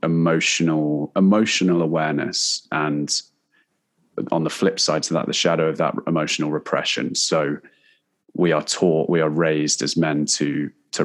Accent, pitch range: British, 75-90 Hz